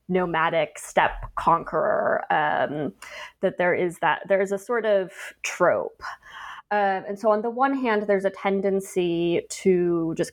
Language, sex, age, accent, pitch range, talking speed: English, female, 20-39, American, 175-215 Hz, 150 wpm